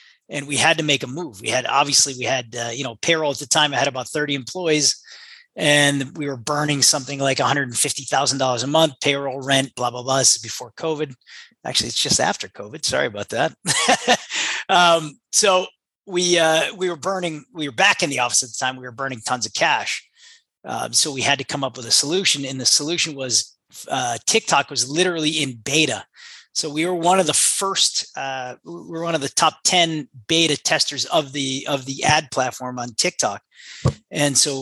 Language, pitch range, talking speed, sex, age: English, 135-165 Hz, 210 wpm, male, 30-49